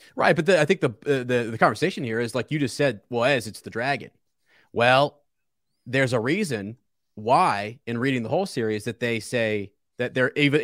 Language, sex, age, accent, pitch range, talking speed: English, male, 30-49, American, 110-140 Hz, 210 wpm